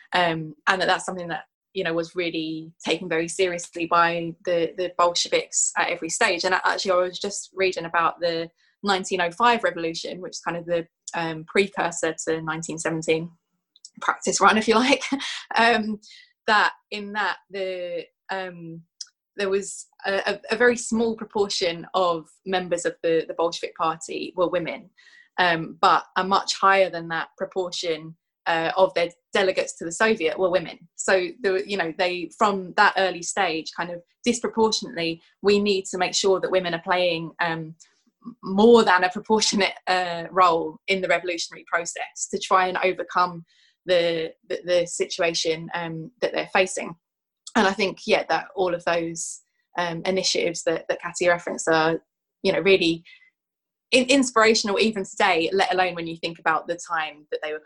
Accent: British